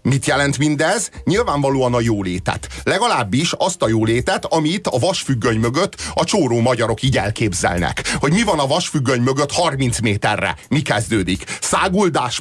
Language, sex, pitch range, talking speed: Hungarian, male, 110-145 Hz, 145 wpm